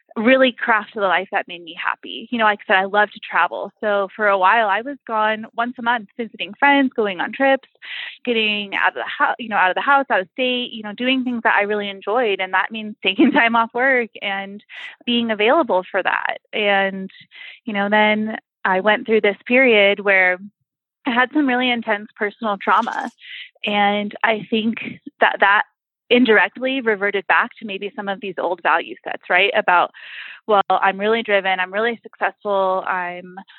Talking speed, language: 195 wpm, English